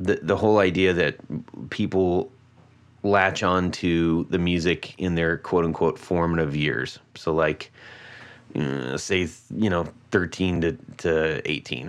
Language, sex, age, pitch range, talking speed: English, male, 30-49, 85-125 Hz, 125 wpm